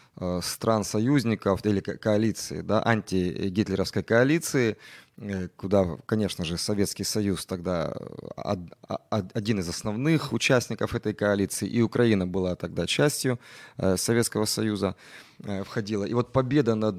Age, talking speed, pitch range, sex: 30-49, 105 wpm, 100-125 Hz, male